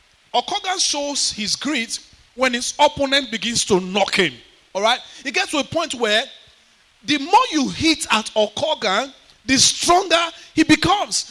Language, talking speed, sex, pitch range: English, 150 wpm, male, 180-285 Hz